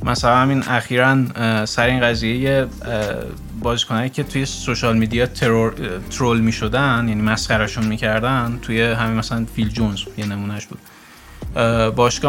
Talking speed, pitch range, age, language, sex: 120 wpm, 110-135 Hz, 20-39, Persian, male